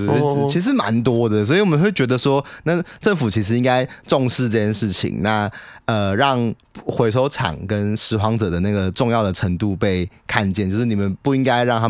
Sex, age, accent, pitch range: male, 30-49, native, 95-115 Hz